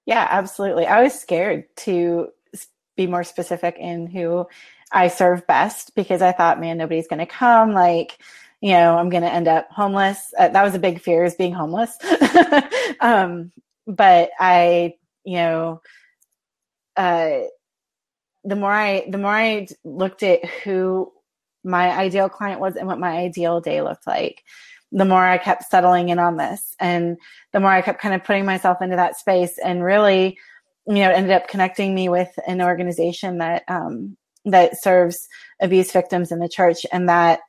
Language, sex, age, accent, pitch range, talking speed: English, female, 30-49, American, 170-195 Hz, 175 wpm